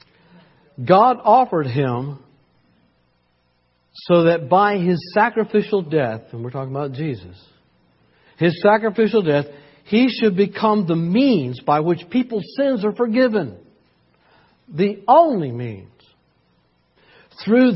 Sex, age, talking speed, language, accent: male, 60-79, 110 wpm, English, American